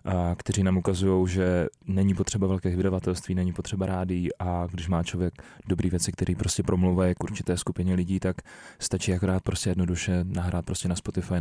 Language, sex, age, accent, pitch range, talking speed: Czech, male, 20-39, native, 90-95 Hz, 180 wpm